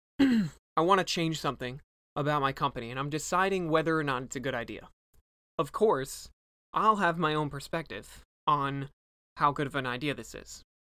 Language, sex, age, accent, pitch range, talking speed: English, male, 20-39, American, 130-160 Hz, 180 wpm